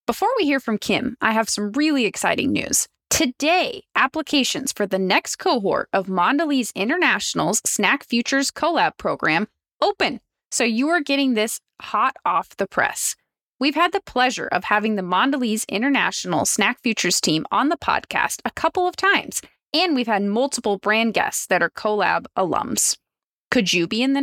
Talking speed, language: 170 wpm, English